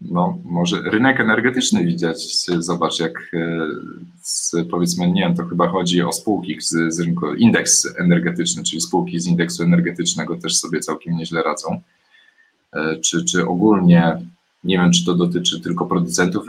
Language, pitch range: Polish, 85-100 Hz